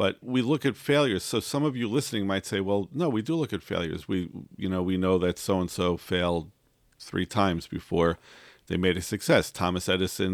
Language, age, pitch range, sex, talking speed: English, 50-69, 90-110 Hz, male, 210 wpm